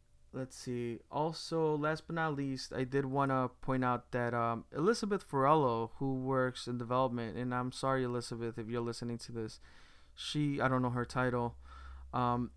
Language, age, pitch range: English, 20-39, 115-140 Hz